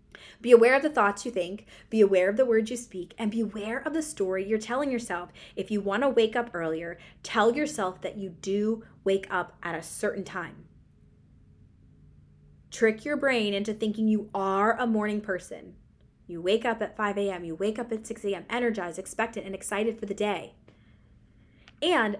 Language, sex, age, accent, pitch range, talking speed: English, female, 20-39, American, 185-235 Hz, 190 wpm